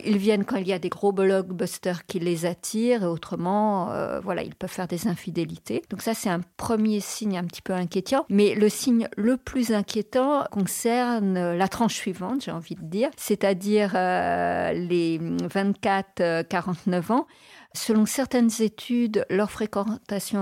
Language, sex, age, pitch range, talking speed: French, female, 50-69, 180-225 Hz, 165 wpm